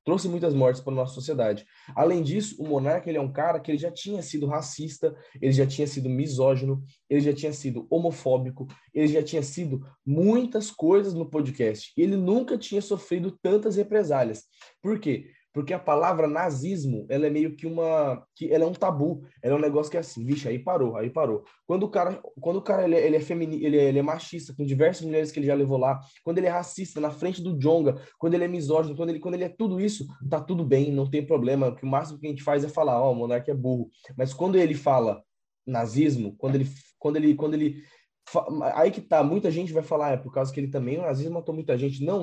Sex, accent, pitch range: male, Brazilian, 135-175 Hz